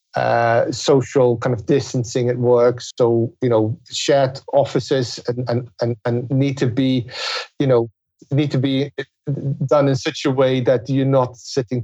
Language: English